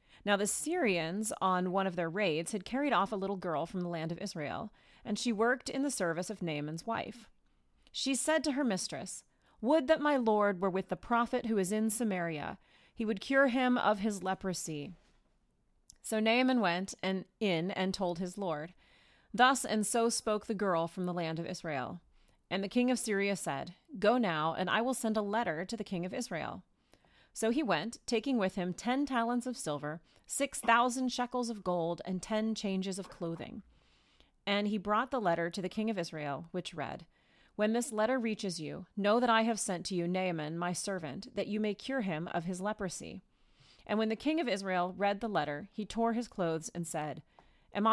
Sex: female